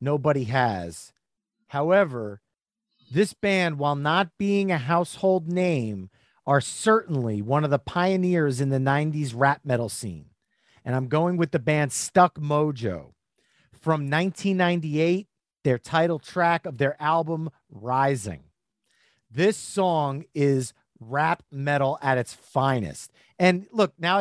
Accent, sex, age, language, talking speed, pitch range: American, male, 40-59, English, 125 wpm, 140-185 Hz